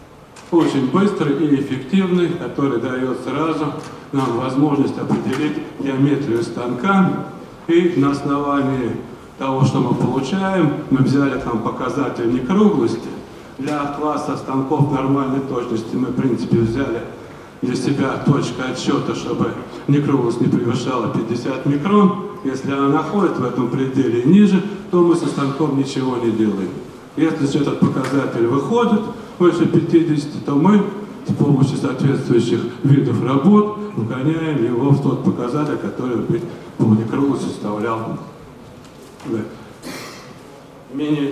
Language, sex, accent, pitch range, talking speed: Russian, male, native, 130-165 Hz, 120 wpm